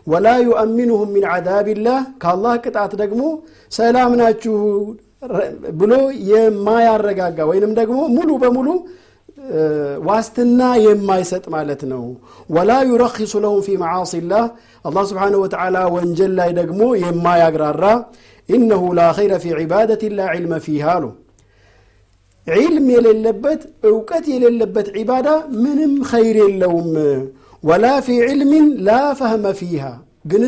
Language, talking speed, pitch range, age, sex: Amharic, 120 wpm, 175-240 Hz, 50-69, male